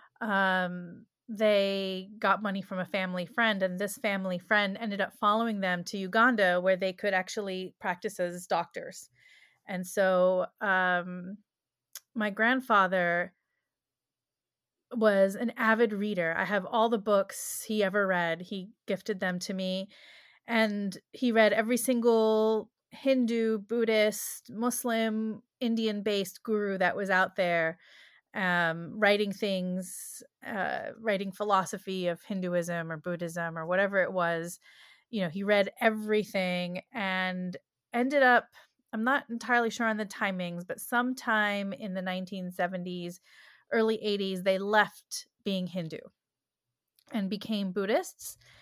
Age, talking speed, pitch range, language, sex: 30-49, 130 wpm, 185-220 Hz, English, female